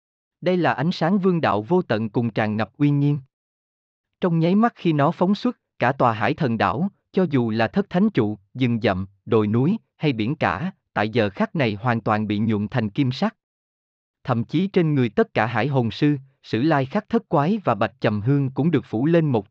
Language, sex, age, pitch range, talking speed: Vietnamese, male, 20-39, 115-170 Hz, 220 wpm